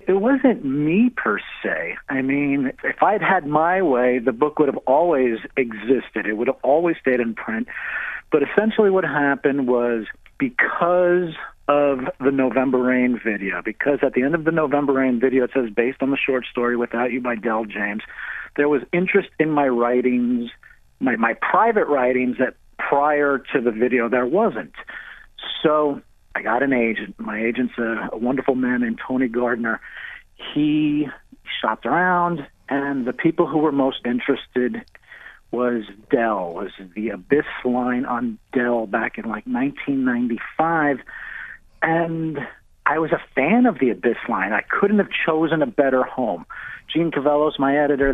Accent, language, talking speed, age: American, English, 165 wpm, 50-69